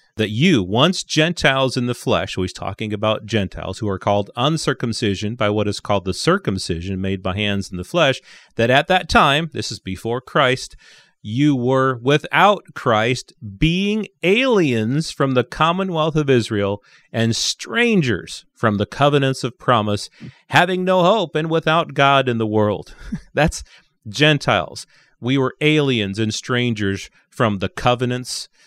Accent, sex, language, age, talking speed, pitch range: American, male, English, 30-49, 150 wpm, 105-140 Hz